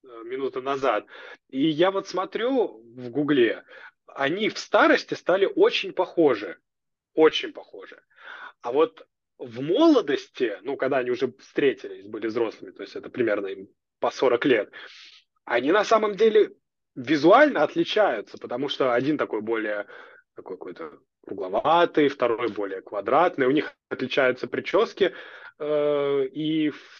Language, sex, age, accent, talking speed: Russian, male, 20-39, native, 125 wpm